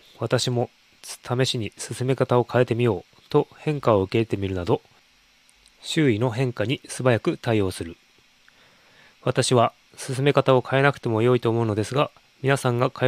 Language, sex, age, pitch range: Japanese, male, 20-39, 115-135 Hz